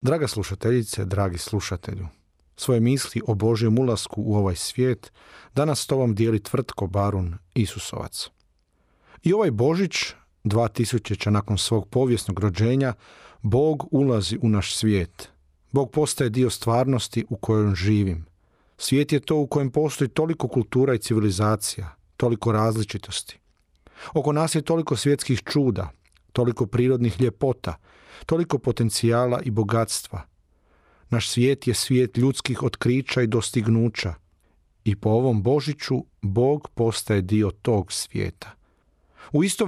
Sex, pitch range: male, 100-130 Hz